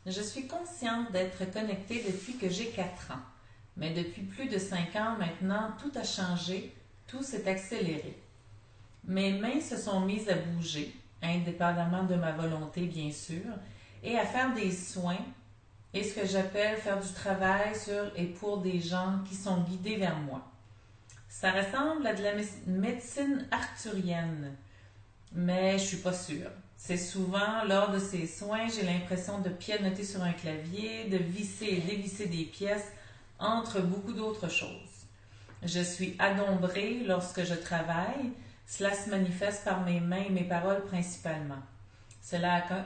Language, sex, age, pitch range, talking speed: French, female, 40-59, 170-205 Hz, 160 wpm